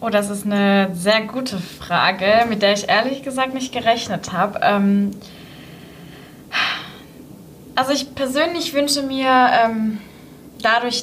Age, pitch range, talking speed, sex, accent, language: 20-39, 195-230 Hz, 115 wpm, female, German, German